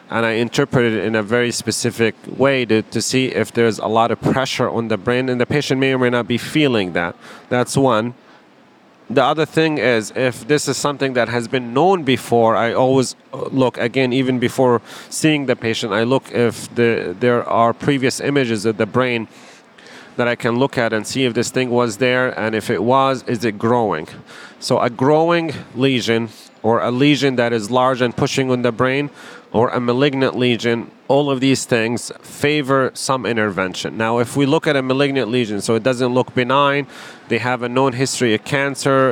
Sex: male